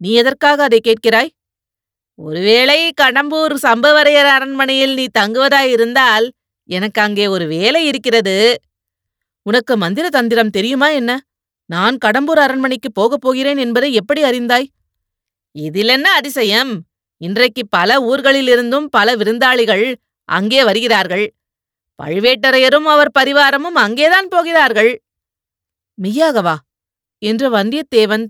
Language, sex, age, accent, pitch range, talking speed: Tamil, female, 30-49, native, 200-270 Hz, 100 wpm